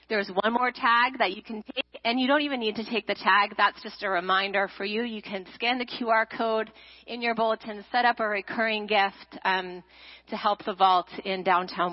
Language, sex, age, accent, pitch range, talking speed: English, female, 40-59, American, 180-230 Hz, 220 wpm